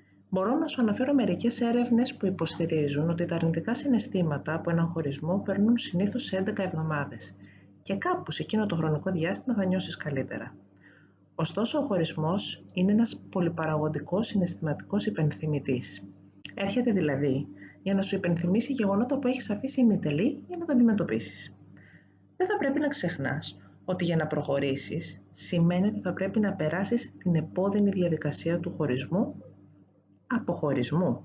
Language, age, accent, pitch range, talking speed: Greek, 30-49, native, 150-215 Hz, 140 wpm